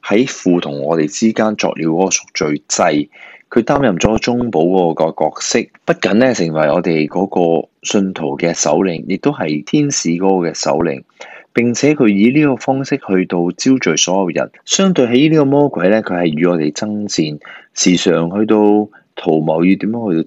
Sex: male